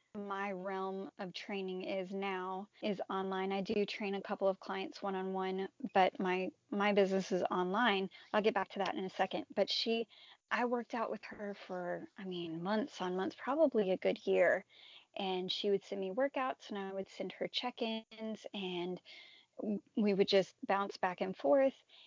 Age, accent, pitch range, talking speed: 10-29, American, 195-230 Hz, 190 wpm